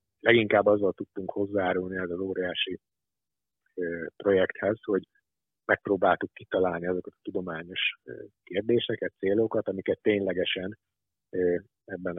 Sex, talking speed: male, 105 wpm